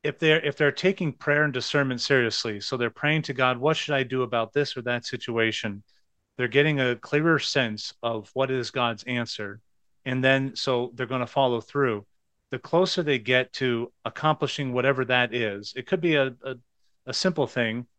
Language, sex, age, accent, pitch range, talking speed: English, male, 40-59, American, 115-140 Hz, 195 wpm